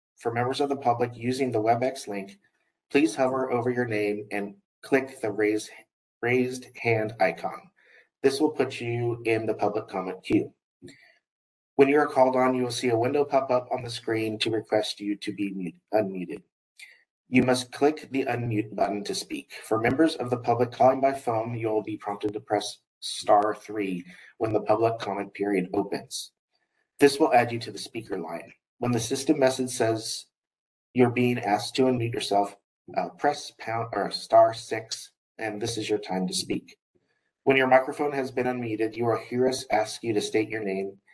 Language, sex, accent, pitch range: English, male, American, 105-130 Hz